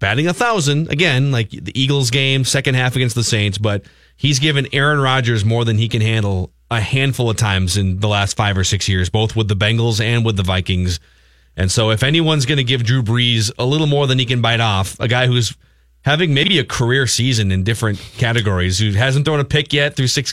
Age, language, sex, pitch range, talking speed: 30-49, English, male, 105-140 Hz, 225 wpm